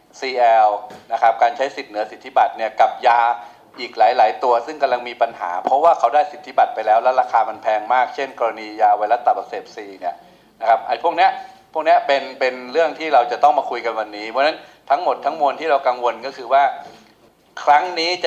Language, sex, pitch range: Thai, male, 120-150 Hz